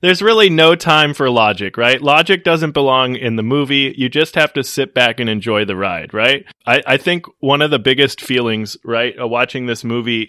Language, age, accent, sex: English, 20-39, American, male